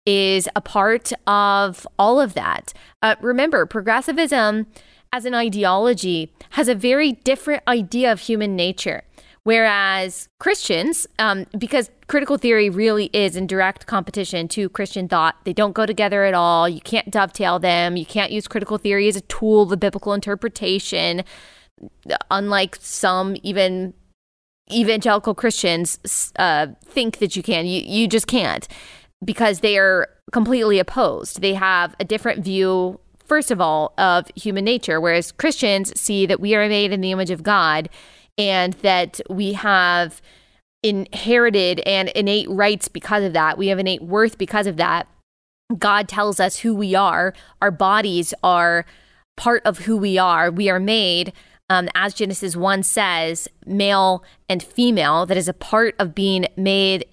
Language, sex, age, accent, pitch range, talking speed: English, female, 20-39, American, 185-220 Hz, 155 wpm